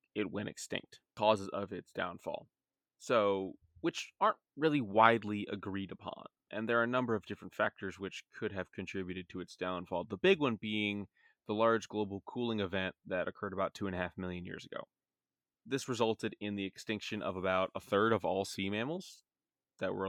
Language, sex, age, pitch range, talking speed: English, male, 20-39, 95-120 Hz, 190 wpm